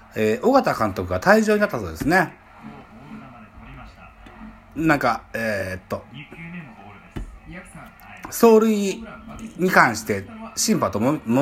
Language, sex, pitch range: Japanese, male, 105-175 Hz